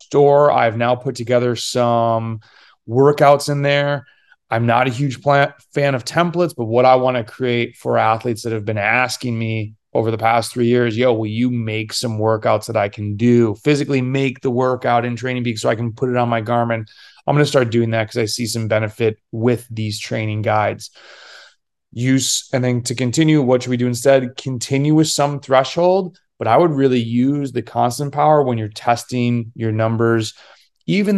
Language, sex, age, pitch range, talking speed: English, male, 30-49, 120-150 Hz, 195 wpm